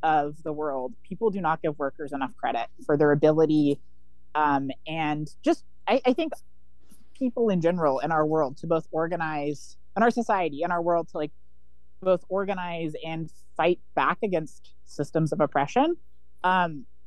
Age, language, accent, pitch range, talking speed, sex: 30-49, English, American, 145-215 Hz, 160 wpm, female